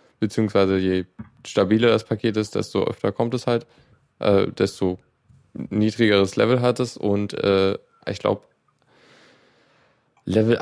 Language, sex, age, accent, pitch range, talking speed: German, male, 10-29, German, 95-115 Hz, 125 wpm